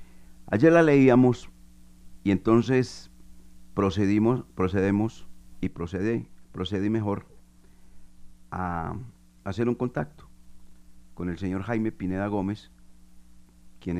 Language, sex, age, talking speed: Spanish, male, 50-69, 100 wpm